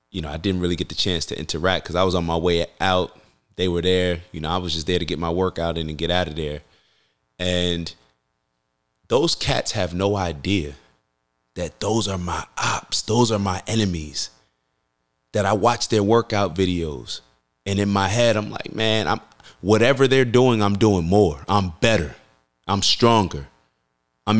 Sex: male